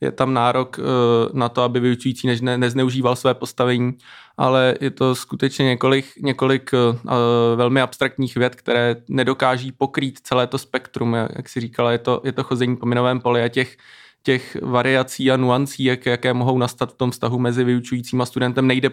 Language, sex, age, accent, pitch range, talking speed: Czech, male, 20-39, native, 125-135 Hz, 175 wpm